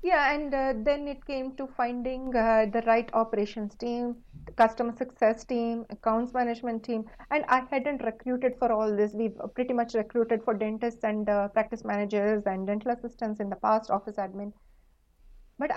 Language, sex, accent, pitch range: English, female, Indian, 215-245 Hz